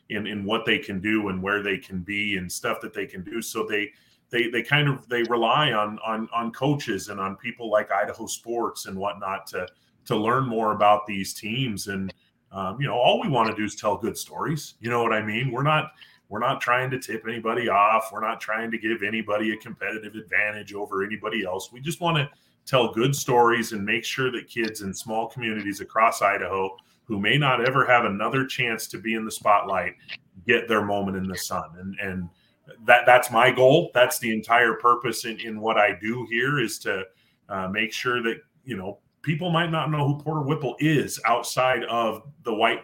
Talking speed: 215 wpm